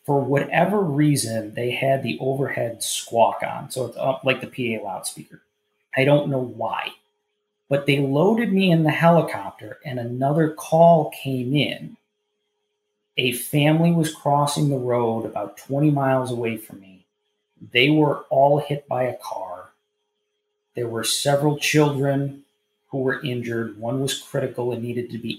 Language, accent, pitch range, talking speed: English, American, 110-150 Hz, 150 wpm